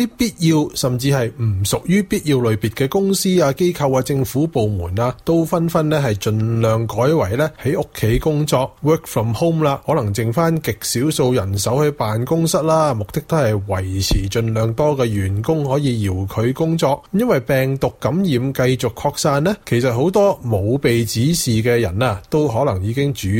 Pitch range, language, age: 115-155 Hz, Chinese, 30-49